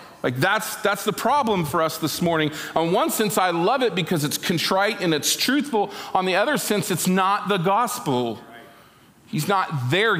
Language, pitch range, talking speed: English, 150-210 Hz, 190 wpm